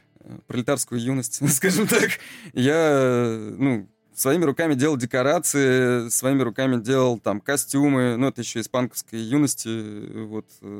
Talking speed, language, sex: 115 wpm, Russian, male